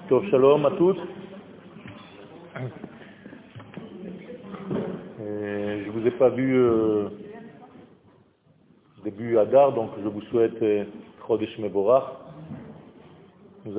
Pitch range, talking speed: 110-135 Hz, 85 wpm